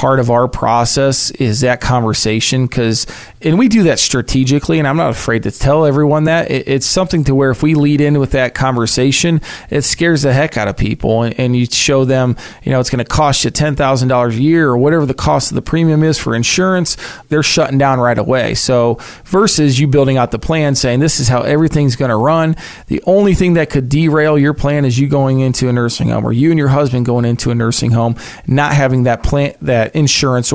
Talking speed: 230 wpm